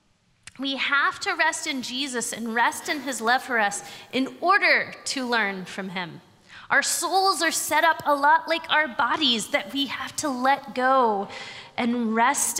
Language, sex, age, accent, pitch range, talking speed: English, female, 20-39, American, 220-305 Hz, 175 wpm